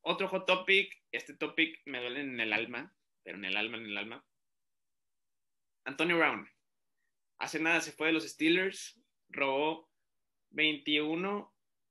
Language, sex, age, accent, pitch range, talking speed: Spanish, male, 20-39, Mexican, 125-165 Hz, 140 wpm